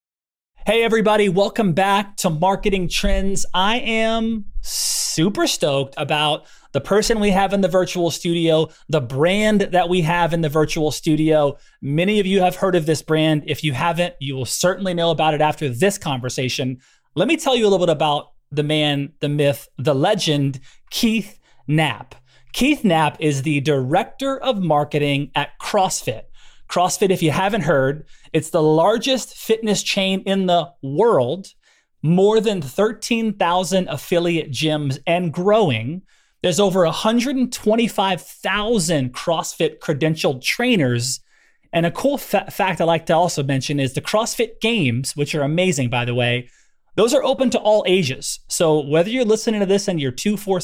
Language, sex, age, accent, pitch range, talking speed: English, male, 30-49, American, 150-205 Hz, 160 wpm